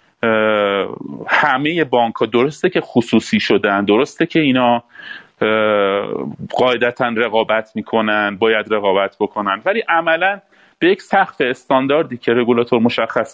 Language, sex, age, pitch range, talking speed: Persian, male, 40-59, 110-150 Hz, 110 wpm